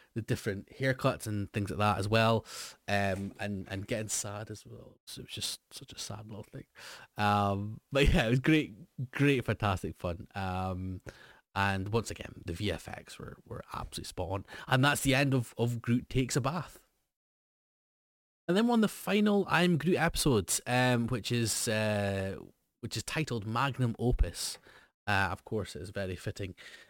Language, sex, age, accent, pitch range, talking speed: English, male, 20-39, British, 100-125 Hz, 175 wpm